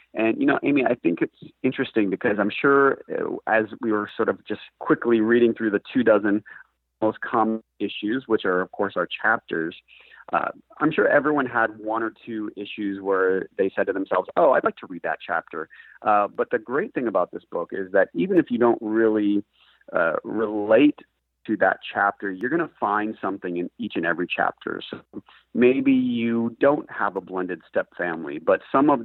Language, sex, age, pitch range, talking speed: English, male, 30-49, 100-120 Hz, 195 wpm